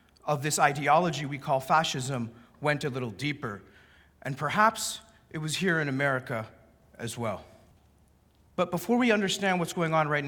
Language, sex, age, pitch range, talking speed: English, male, 40-59, 125-150 Hz, 160 wpm